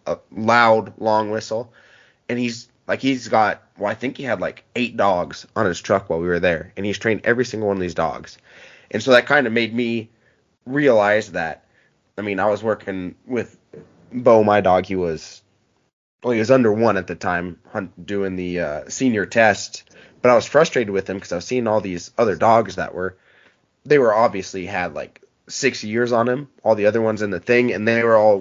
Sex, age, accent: male, 20-39, American